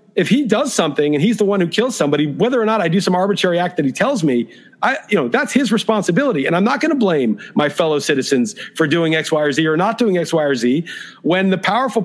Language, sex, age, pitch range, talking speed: English, male, 50-69, 185-230 Hz, 270 wpm